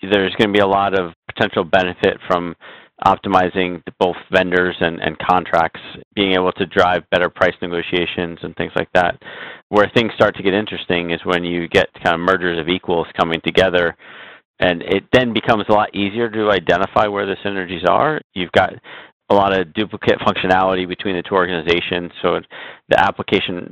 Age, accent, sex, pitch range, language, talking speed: 30-49, American, male, 90-100 Hz, English, 180 wpm